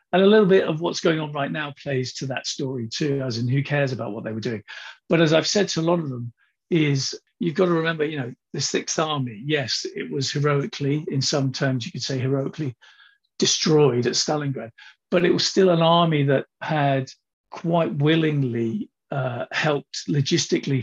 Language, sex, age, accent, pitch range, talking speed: English, male, 50-69, British, 135-165 Hz, 200 wpm